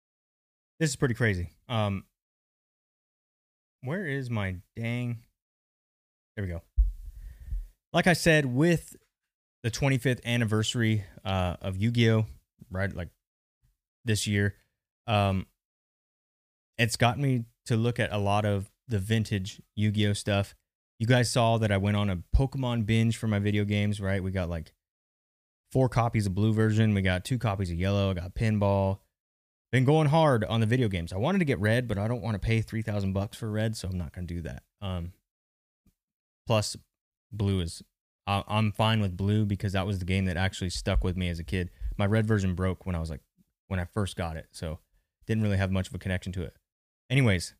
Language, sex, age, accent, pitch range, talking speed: English, male, 20-39, American, 95-115 Hz, 185 wpm